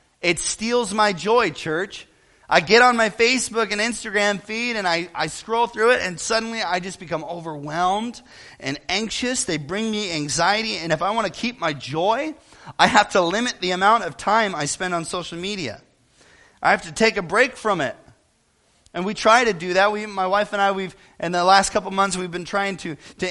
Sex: male